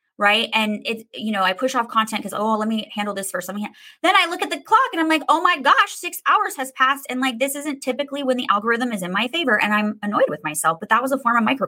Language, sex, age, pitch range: English, female, 20-39, 205-265 Hz